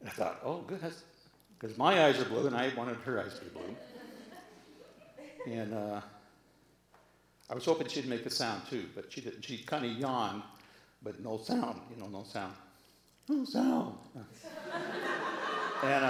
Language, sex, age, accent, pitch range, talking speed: English, male, 60-79, American, 115-160 Hz, 165 wpm